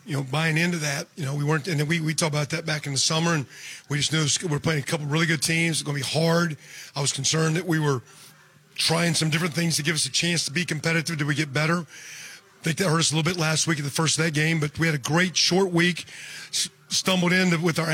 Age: 40-59